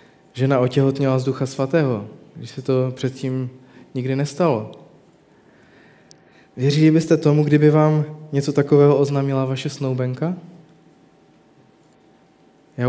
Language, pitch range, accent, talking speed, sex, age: Czech, 130-155 Hz, native, 100 wpm, male, 20-39